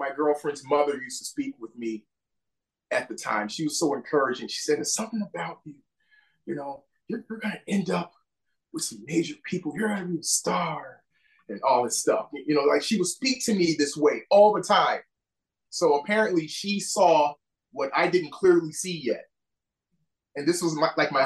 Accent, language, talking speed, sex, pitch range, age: American, English, 195 wpm, male, 140-185 Hz, 30-49